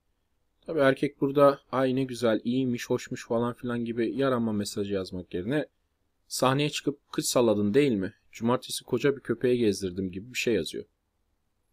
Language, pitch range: Turkish, 95-130 Hz